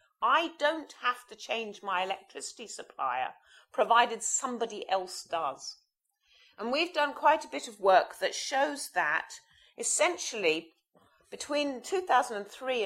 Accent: British